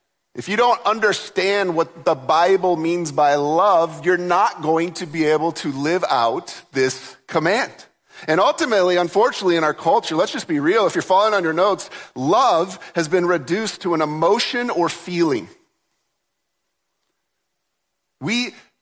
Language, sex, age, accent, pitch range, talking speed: English, male, 40-59, American, 155-205 Hz, 150 wpm